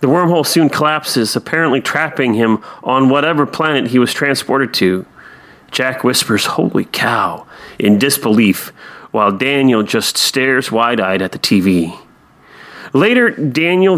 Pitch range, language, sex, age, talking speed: 125-160 Hz, English, male, 40-59, 130 wpm